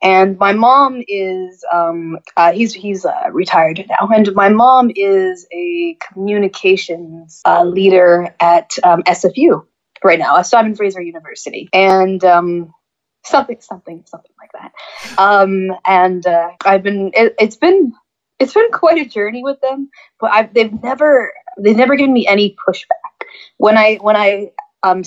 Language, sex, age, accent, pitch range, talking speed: English, female, 20-39, American, 180-230 Hz, 160 wpm